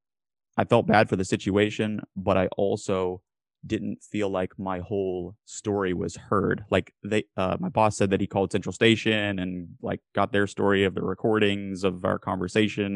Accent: American